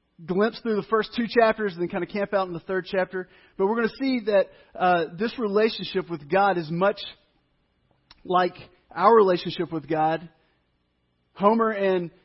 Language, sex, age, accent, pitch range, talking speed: English, male, 30-49, American, 160-205 Hz, 175 wpm